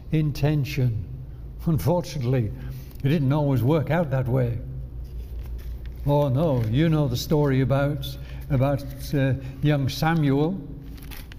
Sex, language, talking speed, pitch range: male, English, 105 wpm, 125-170 Hz